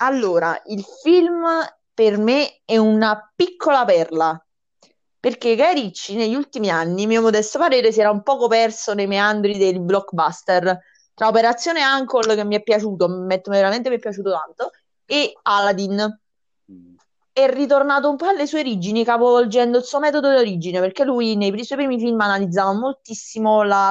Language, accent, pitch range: Italian, native, 195-240 Hz